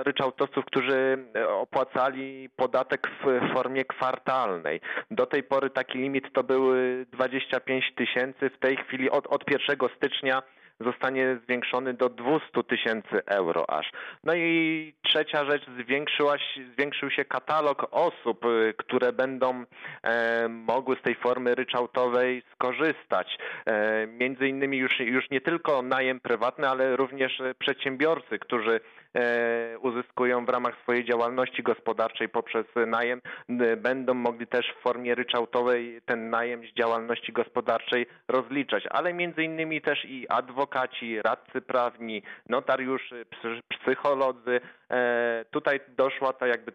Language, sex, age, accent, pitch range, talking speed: Polish, male, 40-59, native, 120-135 Hz, 120 wpm